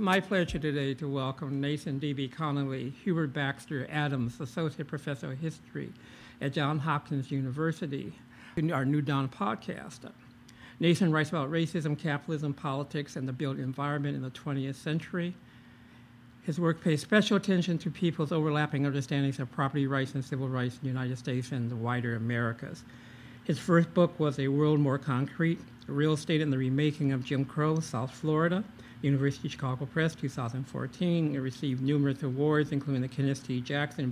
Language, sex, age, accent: English, male, 60-79, American